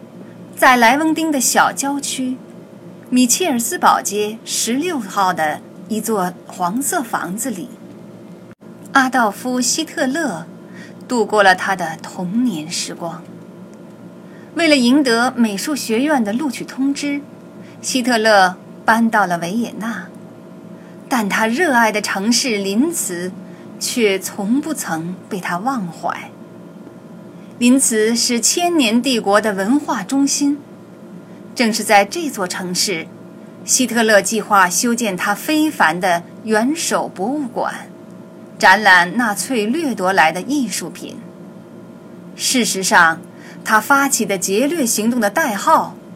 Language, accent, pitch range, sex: Chinese, native, 200-265 Hz, female